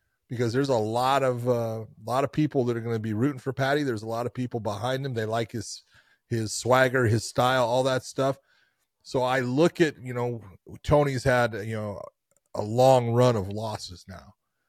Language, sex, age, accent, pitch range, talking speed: English, male, 30-49, American, 110-135 Hz, 210 wpm